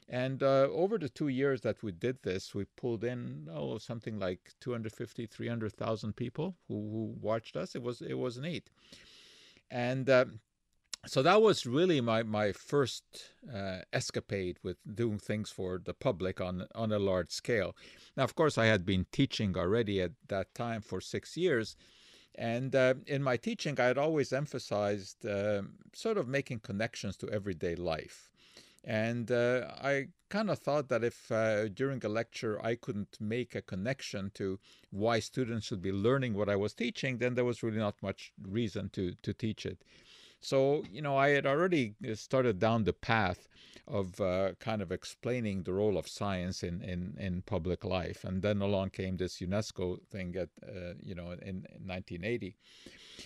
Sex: male